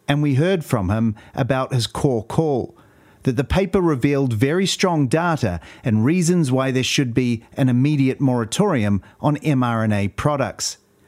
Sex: male